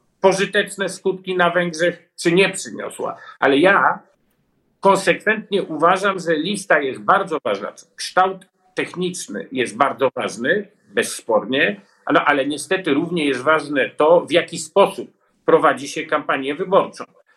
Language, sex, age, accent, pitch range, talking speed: Polish, male, 50-69, native, 175-215 Hz, 120 wpm